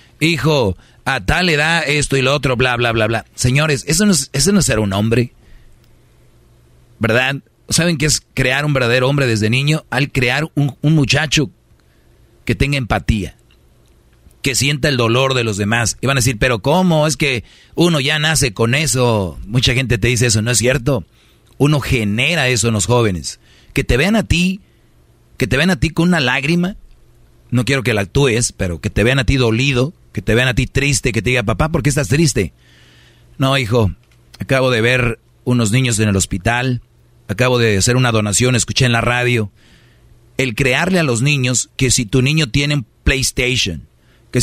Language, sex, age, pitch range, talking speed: Spanish, male, 40-59, 115-140 Hz, 195 wpm